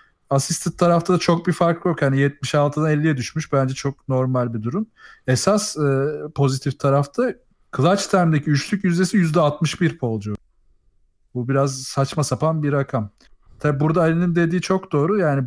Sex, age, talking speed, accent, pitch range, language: male, 40-59, 155 wpm, native, 135-160 Hz, Turkish